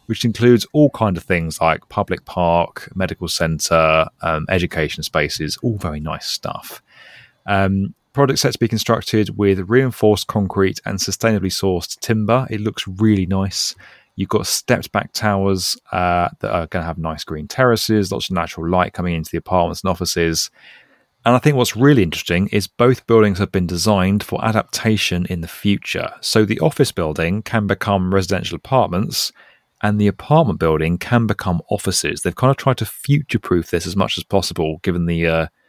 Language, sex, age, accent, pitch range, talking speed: English, male, 30-49, British, 90-110 Hz, 170 wpm